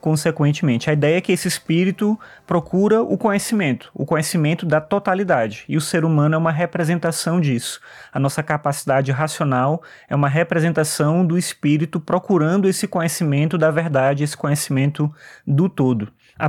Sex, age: male, 20-39